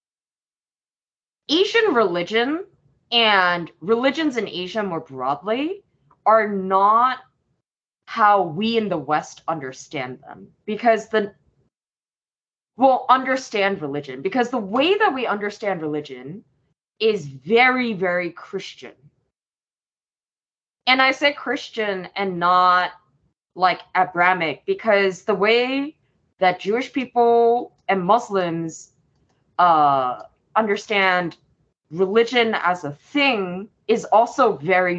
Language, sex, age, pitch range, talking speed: English, female, 20-39, 165-230 Hz, 100 wpm